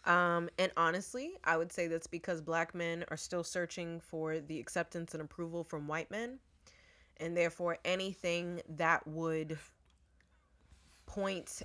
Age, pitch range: 20-39, 155-175 Hz